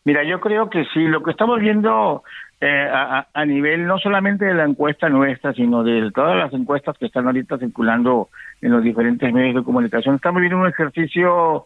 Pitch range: 130-160 Hz